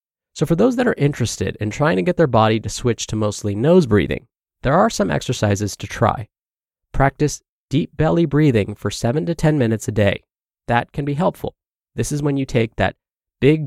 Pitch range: 105-150 Hz